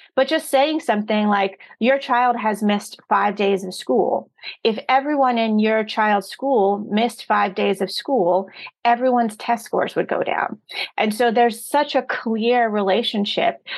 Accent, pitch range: American, 195-250 Hz